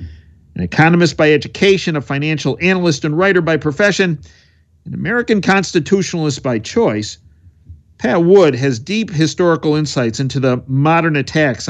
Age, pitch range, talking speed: 50-69, 110-165 Hz, 135 wpm